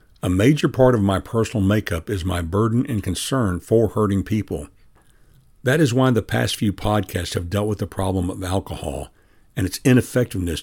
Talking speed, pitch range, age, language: 180 wpm, 95-120 Hz, 60-79, English